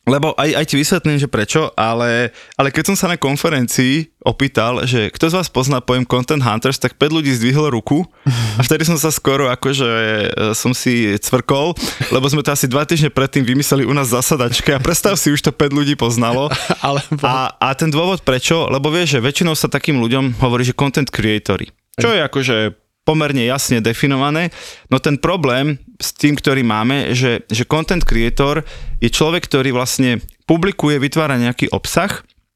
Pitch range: 115-145 Hz